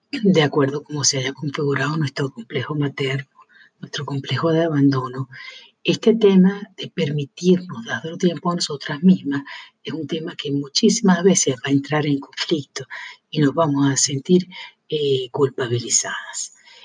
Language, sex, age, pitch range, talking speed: Spanish, female, 50-69, 140-180 Hz, 145 wpm